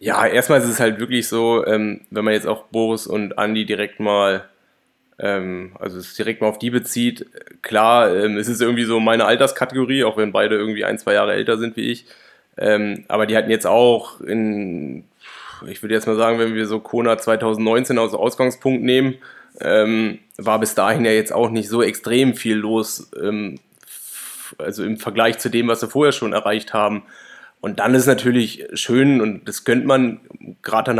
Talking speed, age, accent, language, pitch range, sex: 180 wpm, 20-39, German, German, 105-125 Hz, male